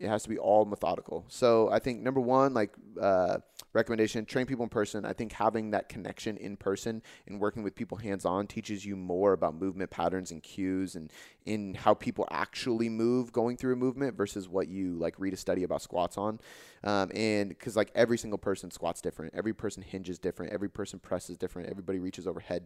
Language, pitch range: English, 95-115 Hz